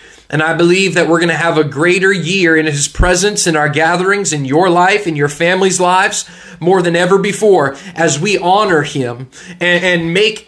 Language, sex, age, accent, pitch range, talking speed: English, male, 20-39, American, 155-195 Hz, 195 wpm